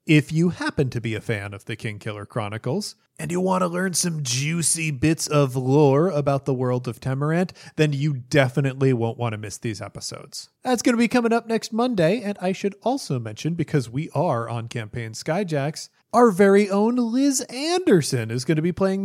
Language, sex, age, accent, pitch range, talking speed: English, male, 30-49, American, 135-220 Hz, 200 wpm